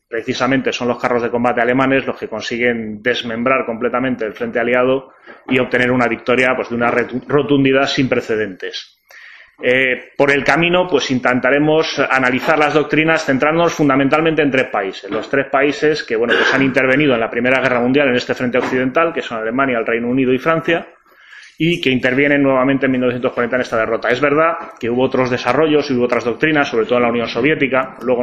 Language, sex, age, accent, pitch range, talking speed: Spanish, male, 30-49, Spanish, 120-140 Hz, 190 wpm